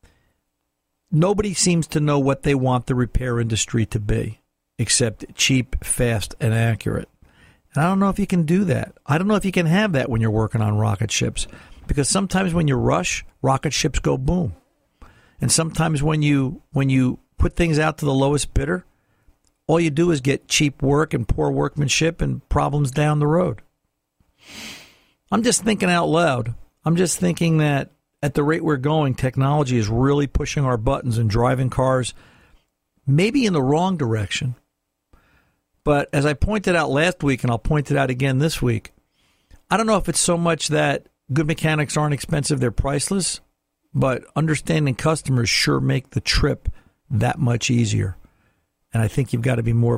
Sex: male